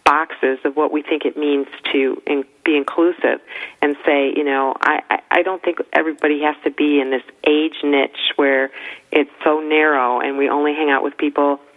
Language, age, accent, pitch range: English, 40-59, American, 140-160 Hz